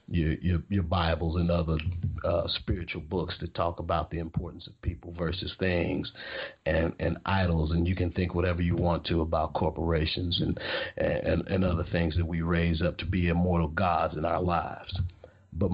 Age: 50-69